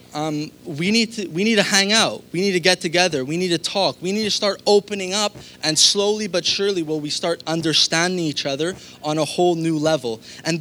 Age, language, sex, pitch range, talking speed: 20-39, English, male, 150-195 Hz, 215 wpm